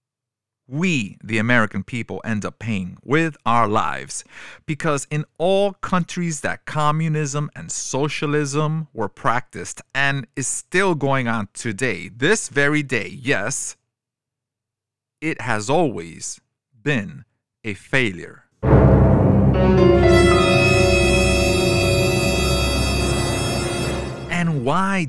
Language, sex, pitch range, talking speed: English, male, 110-145 Hz, 90 wpm